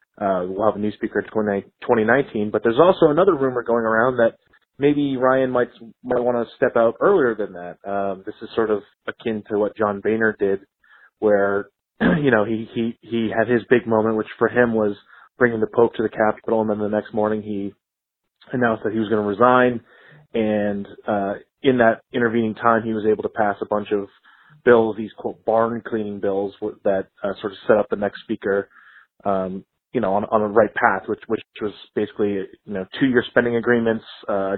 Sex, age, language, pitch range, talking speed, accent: male, 20-39, English, 105-120 Hz, 205 wpm, American